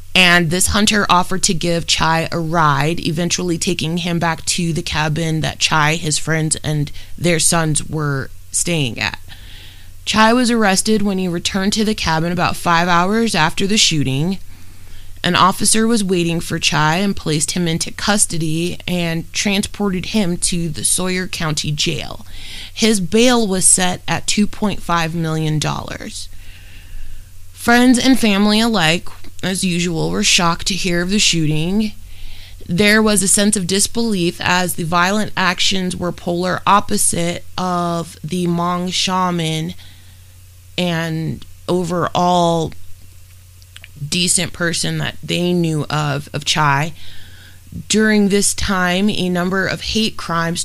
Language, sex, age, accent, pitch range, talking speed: English, female, 20-39, American, 150-185 Hz, 135 wpm